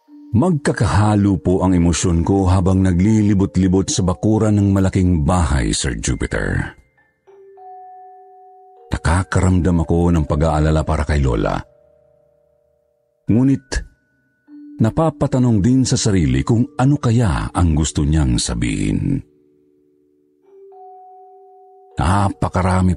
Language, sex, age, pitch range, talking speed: Filipino, male, 50-69, 90-150 Hz, 90 wpm